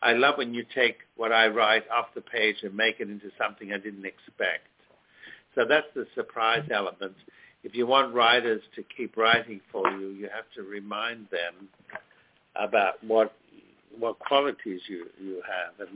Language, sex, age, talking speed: English, male, 60-79, 175 wpm